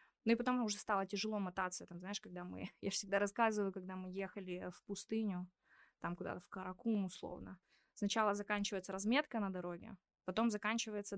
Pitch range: 185-220 Hz